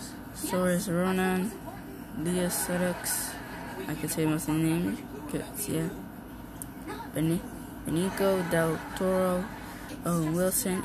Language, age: English, 20-39